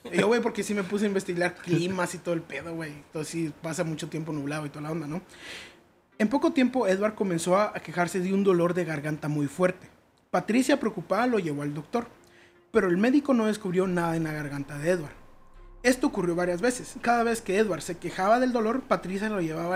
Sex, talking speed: male, 220 wpm